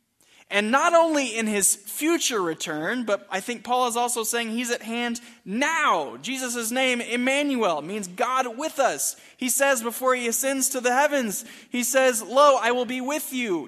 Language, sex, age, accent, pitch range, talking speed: English, male, 20-39, American, 185-255 Hz, 180 wpm